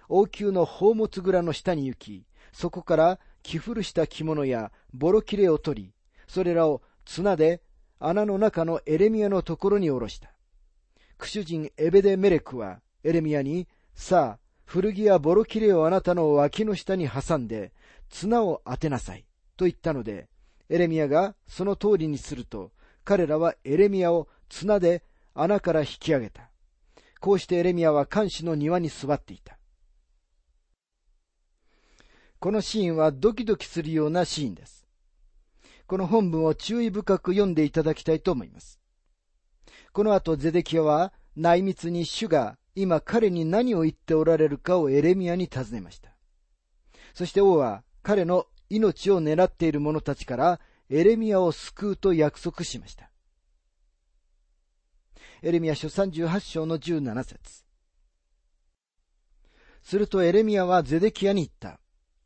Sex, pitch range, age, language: male, 130-190 Hz, 40-59, Japanese